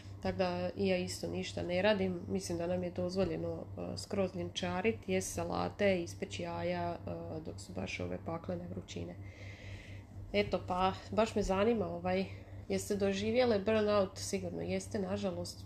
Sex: female